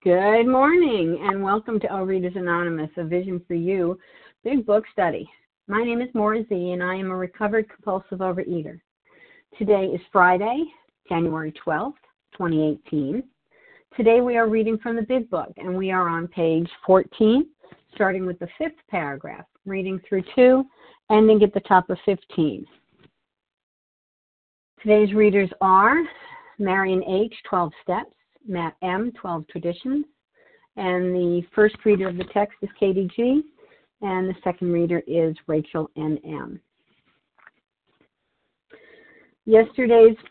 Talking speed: 130 wpm